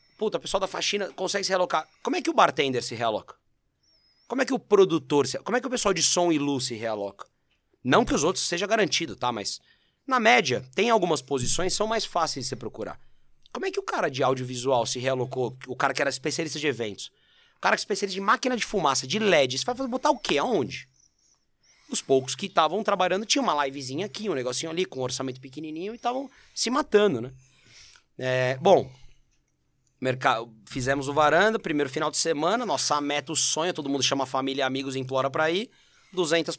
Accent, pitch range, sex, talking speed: Brazilian, 125-180 Hz, male, 215 wpm